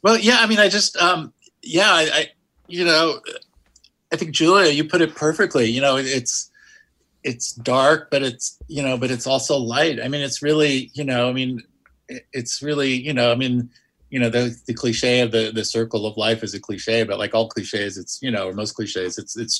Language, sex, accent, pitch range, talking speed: English, male, American, 110-130 Hz, 225 wpm